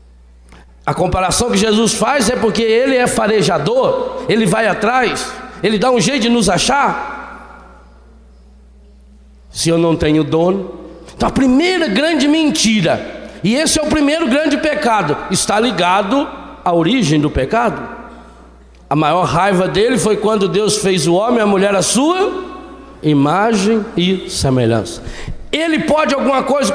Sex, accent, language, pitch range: male, Brazilian, Portuguese, 195-290 Hz